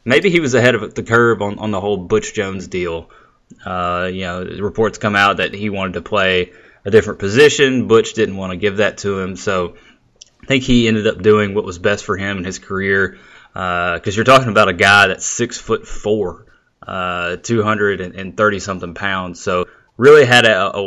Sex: male